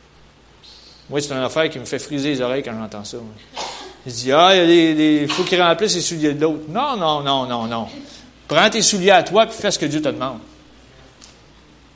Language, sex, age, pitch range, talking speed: French, male, 30-49, 130-165 Hz, 230 wpm